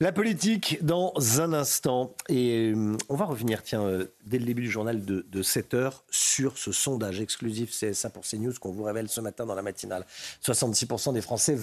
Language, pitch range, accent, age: French, 105-140 Hz, French, 50-69